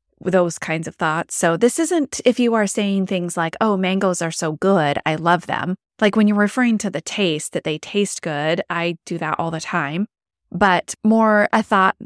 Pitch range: 165-220 Hz